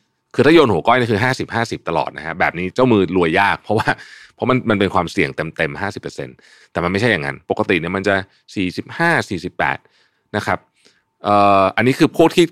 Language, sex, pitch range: Thai, male, 90-130 Hz